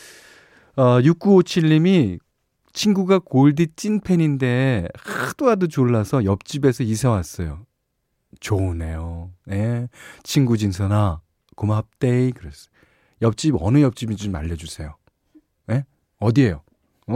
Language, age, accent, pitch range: Korean, 40-59, native, 95-150 Hz